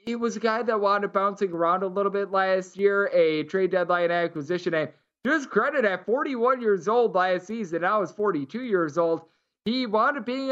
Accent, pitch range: American, 165-205 Hz